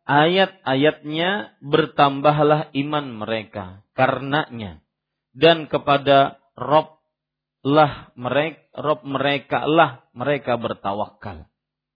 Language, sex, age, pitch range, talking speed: Malay, male, 40-59, 120-150 Hz, 75 wpm